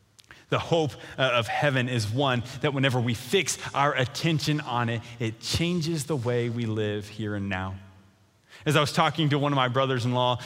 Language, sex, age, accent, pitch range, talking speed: English, male, 30-49, American, 135-175 Hz, 185 wpm